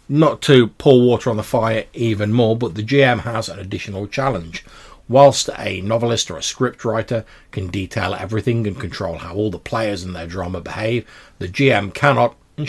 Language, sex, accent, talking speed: English, male, British, 185 wpm